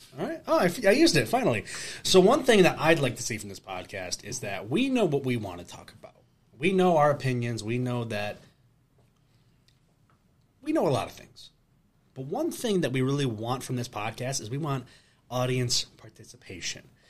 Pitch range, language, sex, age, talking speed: 115-145 Hz, English, male, 30-49, 200 wpm